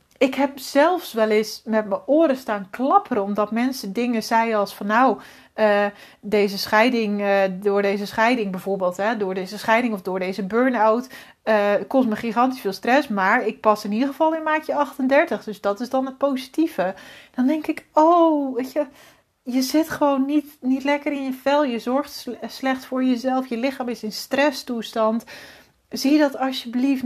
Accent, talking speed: Dutch, 180 wpm